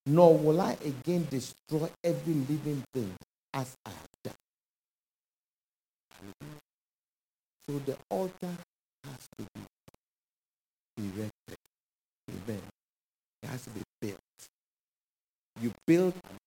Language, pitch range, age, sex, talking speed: English, 110-165 Hz, 60-79, male, 100 wpm